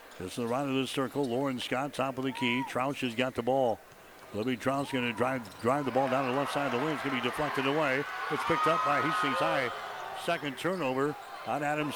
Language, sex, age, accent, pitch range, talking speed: English, male, 60-79, American, 130-150 Hz, 245 wpm